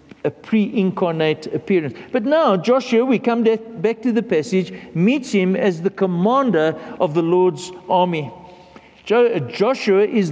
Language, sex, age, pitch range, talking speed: English, male, 60-79, 180-240 Hz, 150 wpm